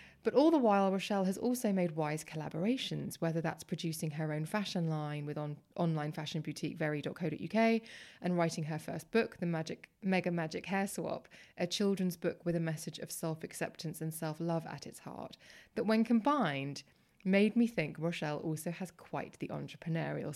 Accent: British